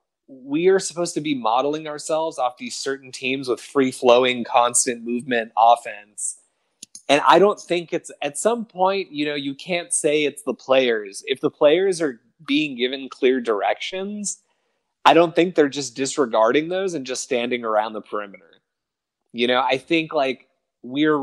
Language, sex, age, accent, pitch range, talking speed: English, male, 30-49, American, 125-165 Hz, 170 wpm